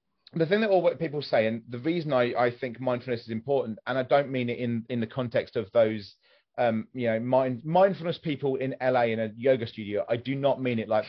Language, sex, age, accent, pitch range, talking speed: English, male, 30-49, British, 120-165 Hz, 235 wpm